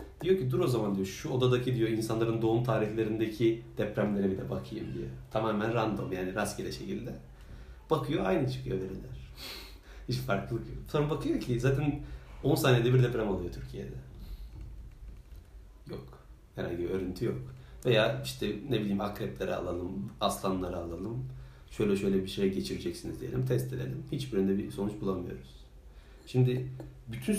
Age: 40-59